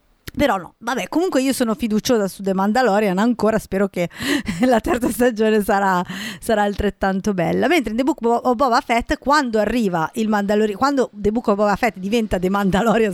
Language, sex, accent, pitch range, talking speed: Italian, female, native, 195-230 Hz, 185 wpm